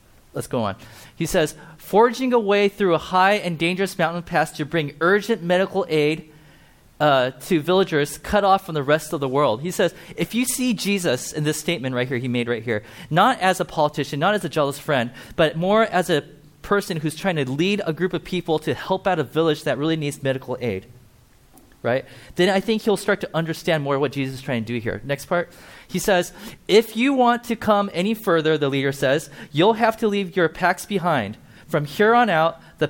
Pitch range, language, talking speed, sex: 145-190 Hz, English, 220 wpm, male